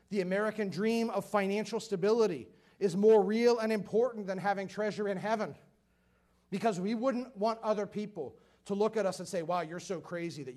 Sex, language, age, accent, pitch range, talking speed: male, English, 40-59, American, 155-215 Hz, 185 wpm